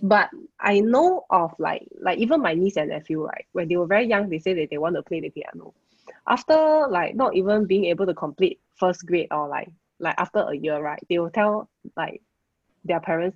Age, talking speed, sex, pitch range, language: 20-39, 220 wpm, female, 160-210 Hz, English